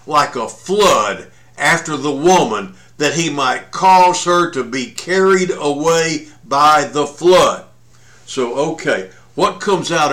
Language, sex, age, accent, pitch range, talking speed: English, male, 60-79, American, 130-180 Hz, 135 wpm